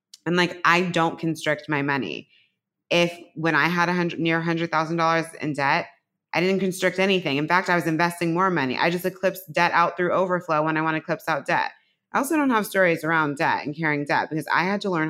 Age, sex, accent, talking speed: 20-39, female, American, 240 wpm